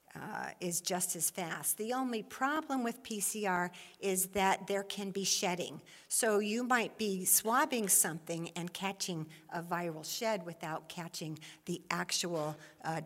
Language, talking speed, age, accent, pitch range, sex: English, 145 wpm, 50-69, American, 180-240 Hz, female